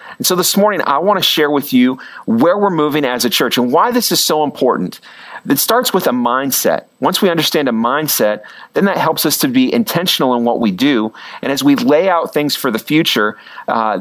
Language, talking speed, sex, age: English, 225 wpm, male, 40-59